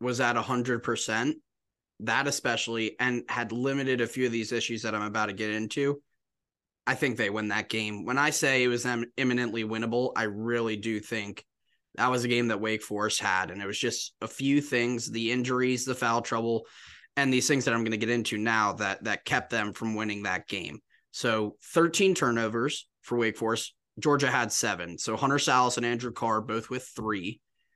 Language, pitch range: English, 110-125 Hz